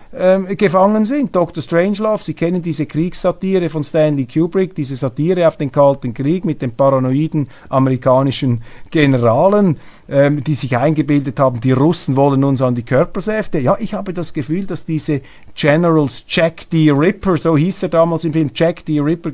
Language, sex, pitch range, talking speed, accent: German, male, 130-170 Hz, 165 wpm, Austrian